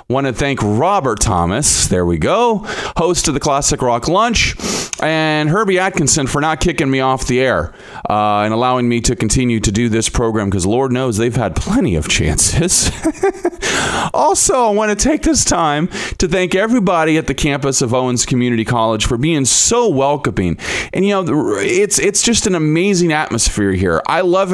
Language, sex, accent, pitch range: English, male, American, 115-180 Hz